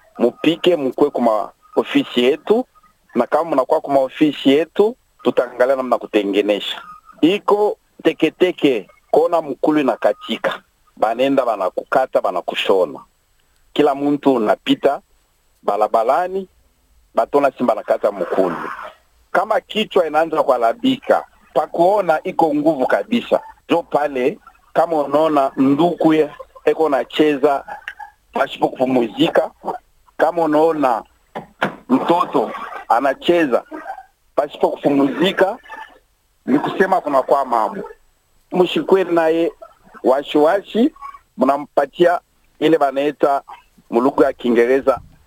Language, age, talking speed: Swahili, 50-69, 90 wpm